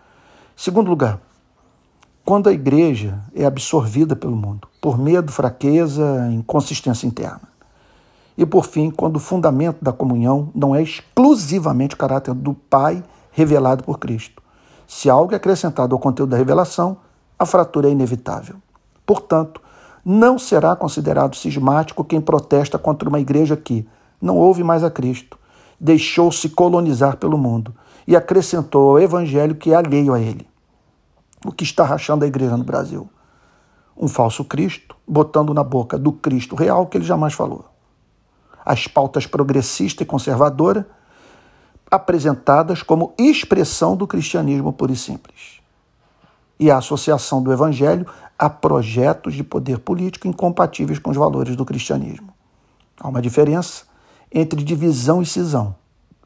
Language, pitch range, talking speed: Portuguese, 130-170 Hz, 140 wpm